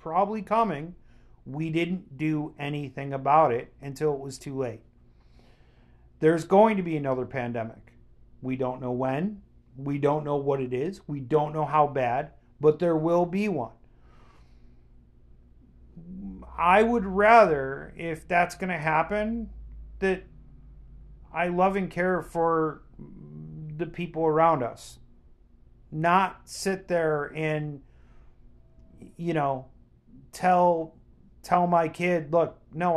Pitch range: 130-175 Hz